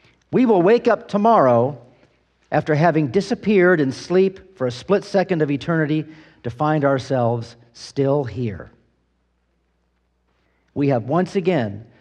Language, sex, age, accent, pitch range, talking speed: English, male, 50-69, American, 120-190 Hz, 125 wpm